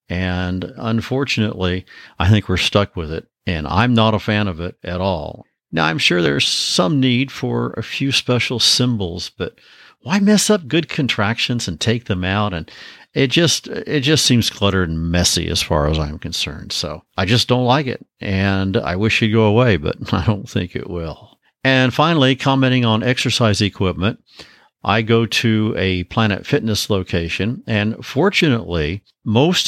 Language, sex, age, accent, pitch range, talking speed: English, male, 50-69, American, 95-125 Hz, 175 wpm